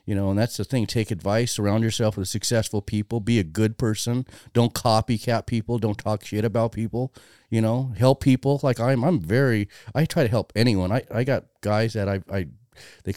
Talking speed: 210 wpm